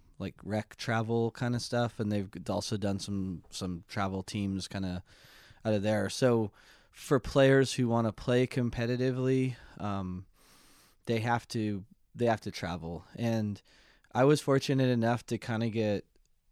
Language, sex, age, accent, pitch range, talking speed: English, male, 20-39, American, 100-120 Hz, 160 wpm